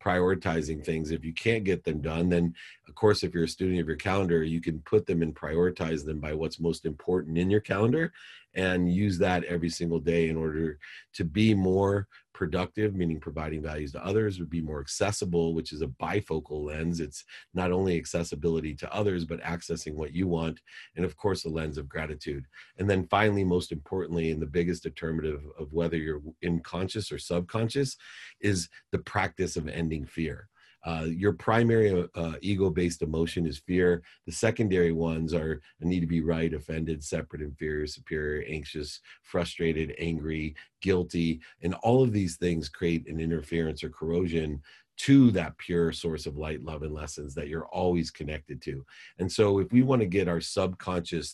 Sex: male